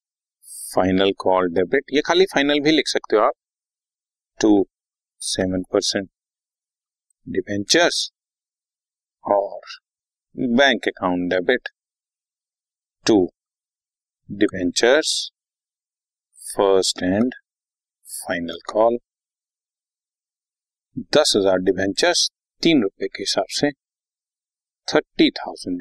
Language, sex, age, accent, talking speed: Hindi, male, 50-69, native, 80 wpm